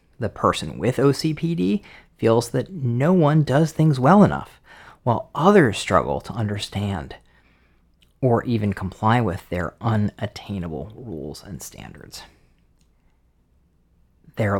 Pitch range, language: 85-125 Hz, English